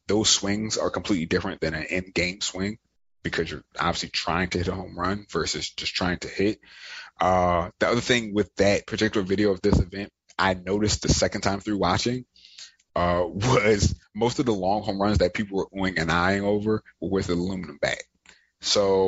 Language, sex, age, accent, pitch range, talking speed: English, male, 30-49, American, 90-105 Hz, 195 wpm